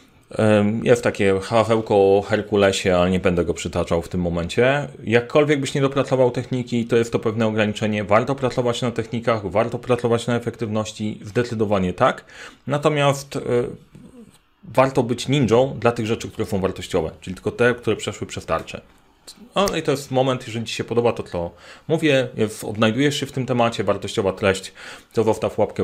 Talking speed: 170 wpm